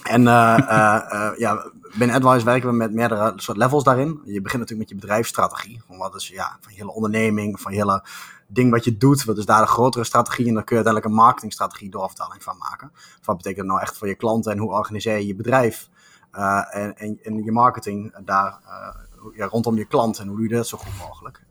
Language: Dutch